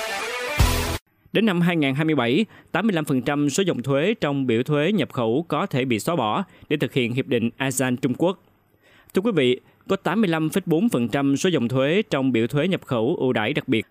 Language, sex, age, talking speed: Vietnamese, male, 20-39, 180 wpm